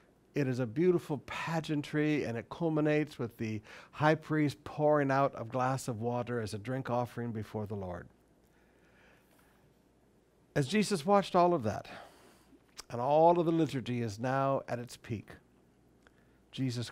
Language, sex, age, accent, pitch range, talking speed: English, male, 60-79, American, 120-150 Hz, 150 wpm